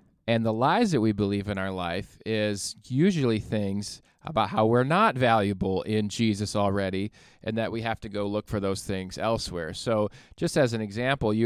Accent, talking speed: American, 195 wpm